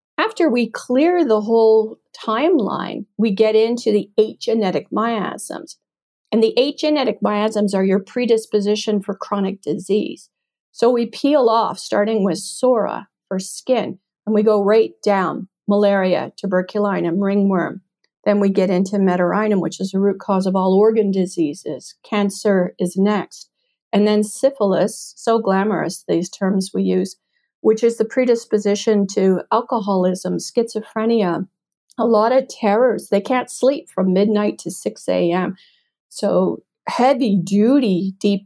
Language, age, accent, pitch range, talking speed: English, 50-69, American, 190-225 Hz, 140 wpm